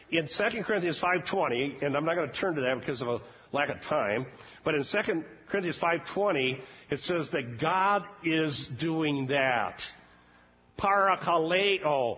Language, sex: English, male